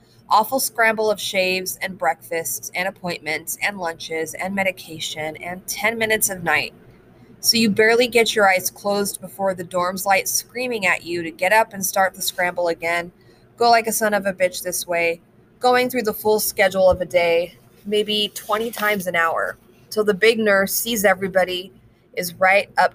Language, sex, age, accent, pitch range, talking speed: English, female, 20-39, American, 170-220 Hz, 185 wpm